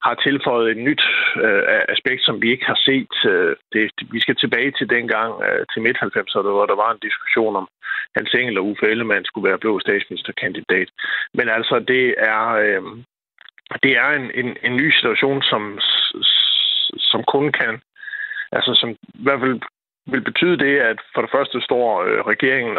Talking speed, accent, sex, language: 175 wpm, native, male, Danish